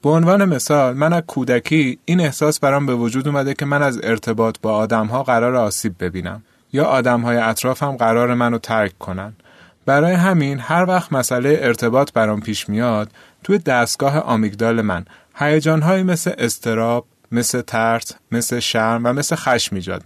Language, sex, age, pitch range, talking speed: Persian, male, 30-49, 110-150 Hz, 155 wpm